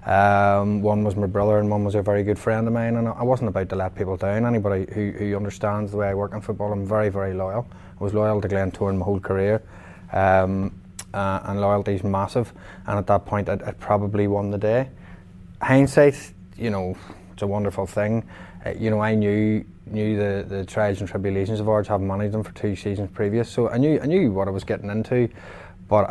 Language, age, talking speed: English, 20-39, 225 wpm